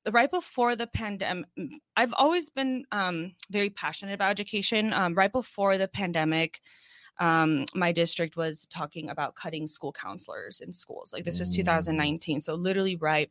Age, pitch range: 20-39, 170-210 Hz